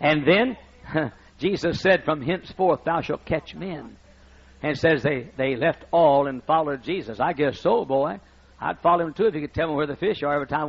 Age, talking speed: 60-79, 215 wpm